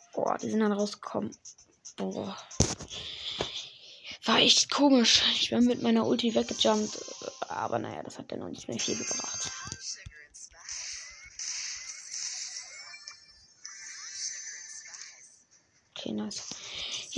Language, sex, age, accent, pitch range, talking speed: German, female, 20-39, German, 205-265 Hz, 95 wpm